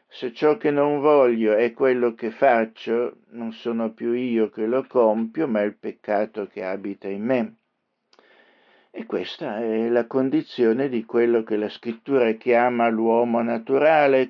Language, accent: Italian, native